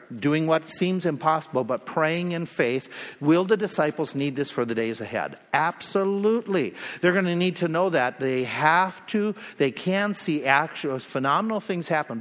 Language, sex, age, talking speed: English, male, 50-69, 170 wpm